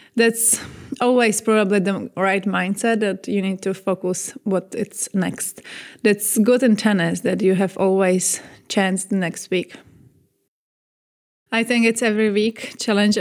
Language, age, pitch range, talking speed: English, 20-39, 185-220 Hz, 140 wpm